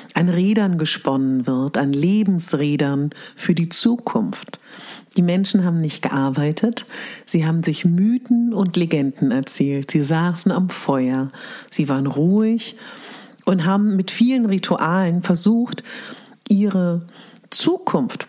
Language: German